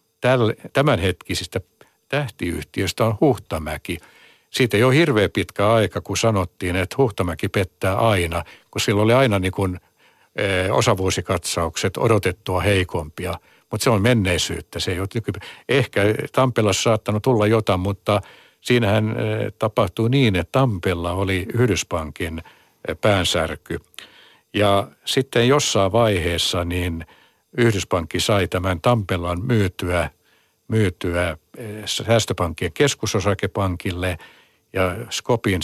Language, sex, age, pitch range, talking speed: Finnish, male, 60-79, 90-110 Hz, 100 wpm